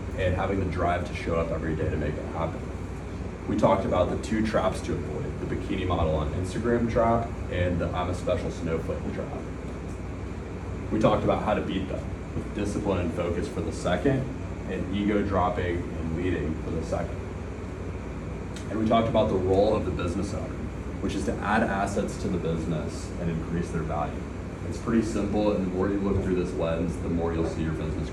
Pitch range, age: 85-95 Hz, 30-49